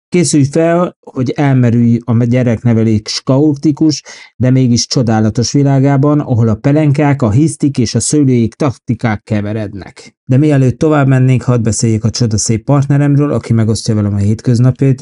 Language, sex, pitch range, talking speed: Hungarian, male, 110-140 Hz, 135 wpm